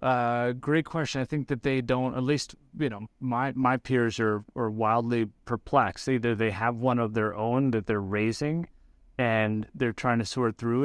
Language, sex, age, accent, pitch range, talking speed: English, male, 30-49, American, 110-130 Hz, 195 wpm